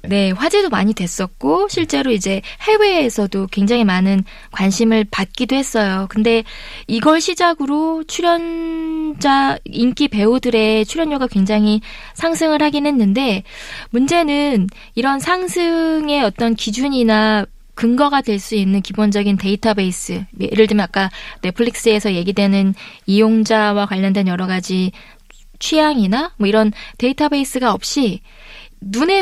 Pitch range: 210-285 Hz